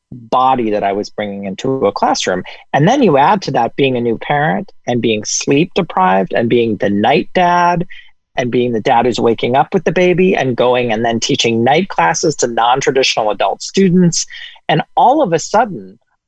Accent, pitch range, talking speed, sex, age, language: American, 125-190 Hz, 195 wpm, male, 40-59, English